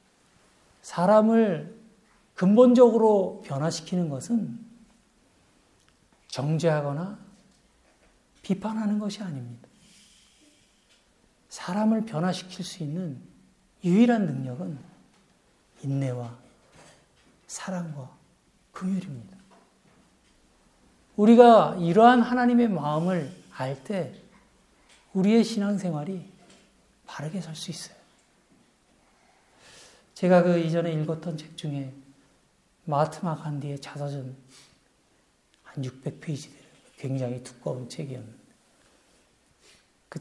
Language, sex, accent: Korean, male, native